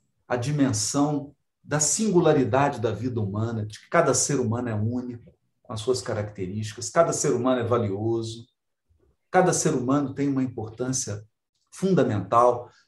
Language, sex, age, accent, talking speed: Portuguese, male, 50-69, Brazilian, 140 wpm